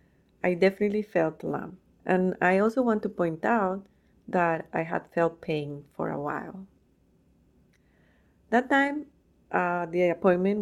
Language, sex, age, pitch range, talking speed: English, female, 30-49, 160-200 Hz, 135 wpm